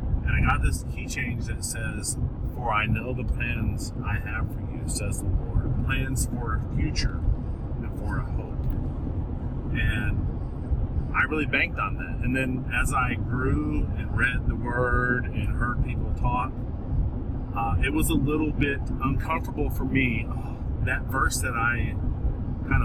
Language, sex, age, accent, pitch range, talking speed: English, male, 30-49, American, 105-120 Hz, 160 wpm